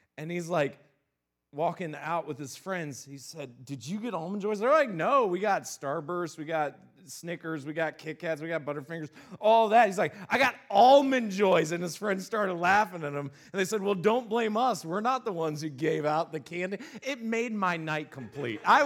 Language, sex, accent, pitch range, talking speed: English, male, American, 165-235 Hz, 215 wpm